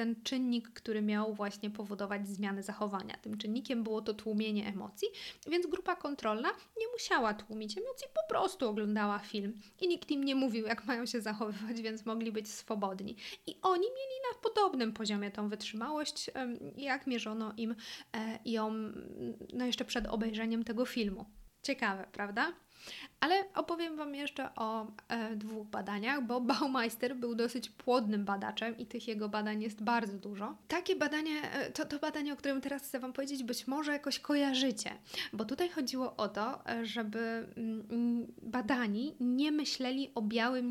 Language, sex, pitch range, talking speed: Polish, female, 220-275 Hz, 155 wpm